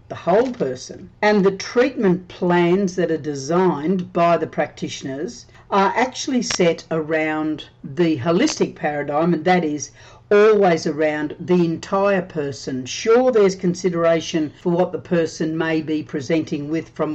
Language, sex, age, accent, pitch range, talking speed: English, female, 50-69, Australian, 155-190 Hz, 140 wpm